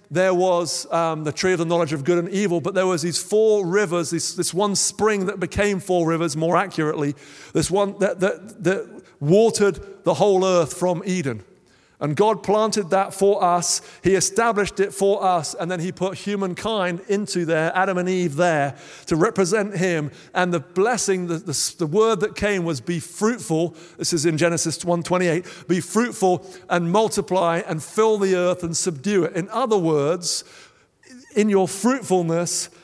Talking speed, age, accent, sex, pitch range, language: 175 wpm, 50-69, British, male, 160-195 Hz, English